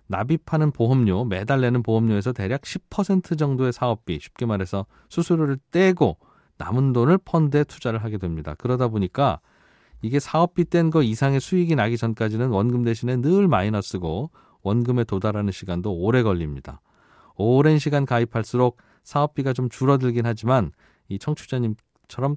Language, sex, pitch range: Korean, male, 110-155 Hz